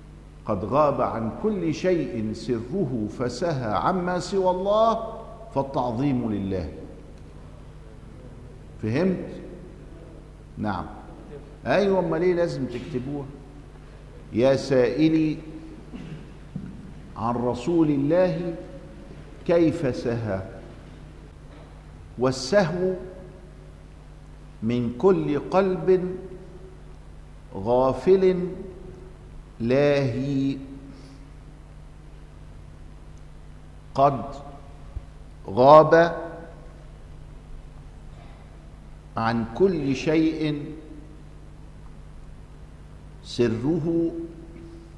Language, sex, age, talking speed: Arabic, male, 50-69, 50 wpm